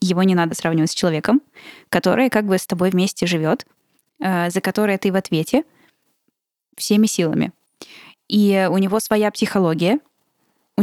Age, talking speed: 10-29, 145 wpm